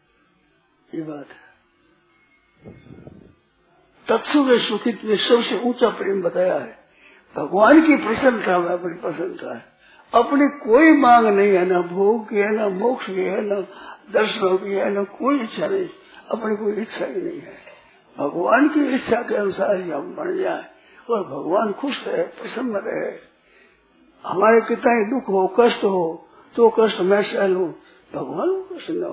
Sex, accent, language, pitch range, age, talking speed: male, native, Hindi, 195-260 Hz, 50-69, 140 wpm